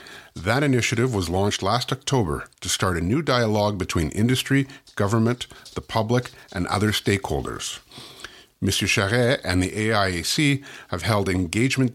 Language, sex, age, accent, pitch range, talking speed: English, male, 50-69, American, 95-125 Hz, 135 wpm